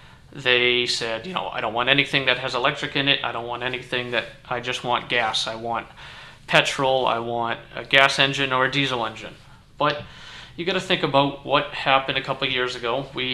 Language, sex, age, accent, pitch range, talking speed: English, male, 30-49, American, 125-140 Hz, 210 wpm